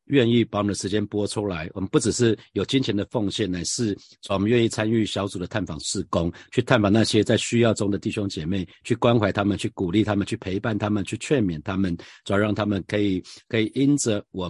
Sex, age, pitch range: male, 50-69, 95-115 Hz